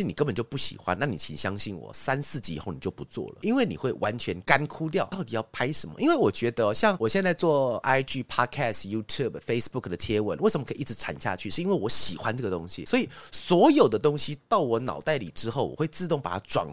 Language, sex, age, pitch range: Chinese, male, 30-49, 105-160 Hz